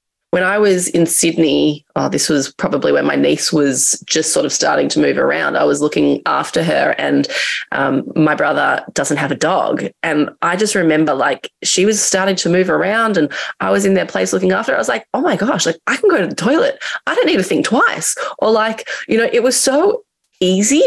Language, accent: English, Australian